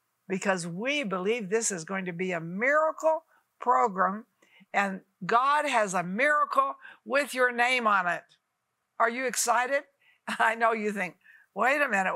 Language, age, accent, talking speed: English, 60-79, American, 155 wpm